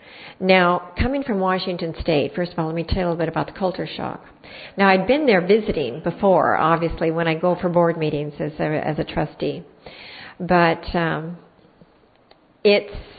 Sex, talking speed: female, 175 wpm